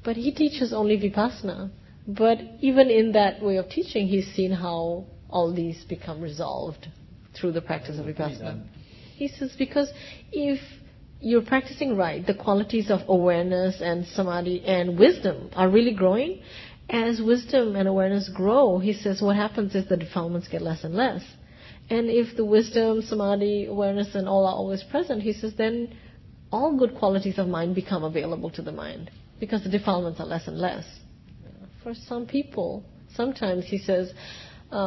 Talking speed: 165 wpm